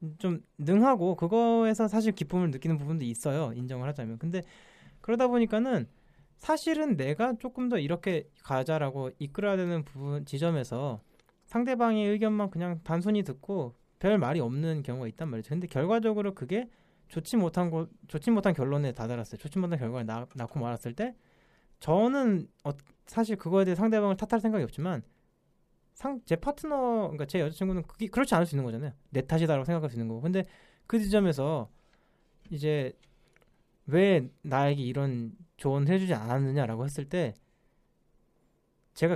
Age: 20-39